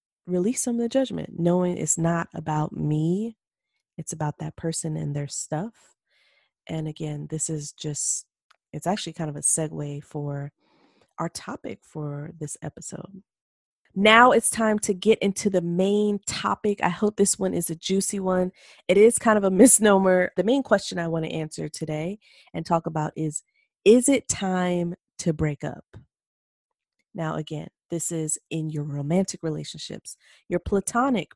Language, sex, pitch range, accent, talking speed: English, female, 155-200 Hz, American, 165 wpm